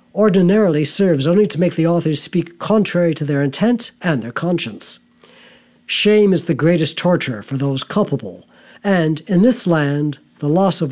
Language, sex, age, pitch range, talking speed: English, male, 60-79, 145-195 Hz, 165 wpm